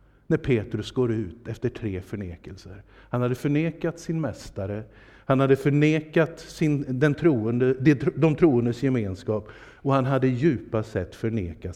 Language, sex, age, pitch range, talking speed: Swedish, male, 50-69, 110-160 Hz, 140 wpm